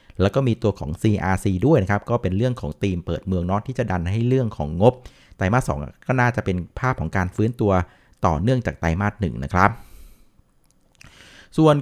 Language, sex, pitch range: Thai, male, 95-130 Hz